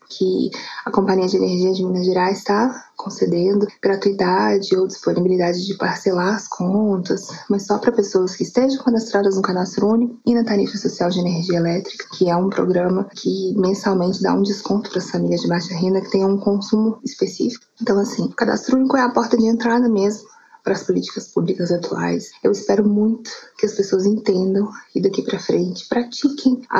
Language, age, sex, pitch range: Portuguese, 20-39, female, 185-225 Hz